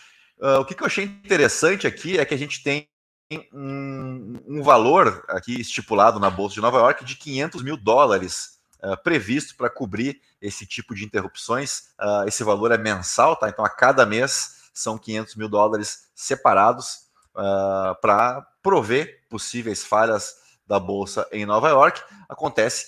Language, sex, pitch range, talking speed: Portuguese, male, 105-130 Hz, 160 wpm